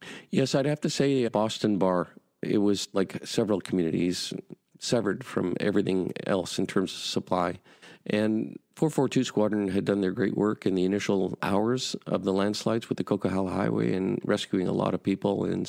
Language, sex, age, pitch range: English, male, 50-69, 95-110 Hz